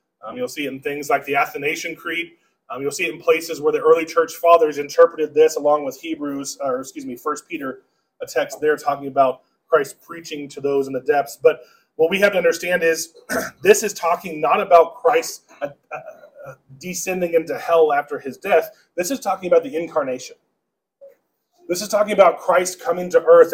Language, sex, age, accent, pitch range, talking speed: English, male, 30-49, American, 165-240 Hz, 200 wpm